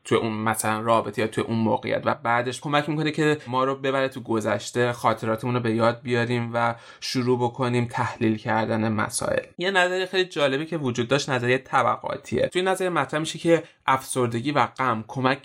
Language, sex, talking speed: Persian, male, 180 wpm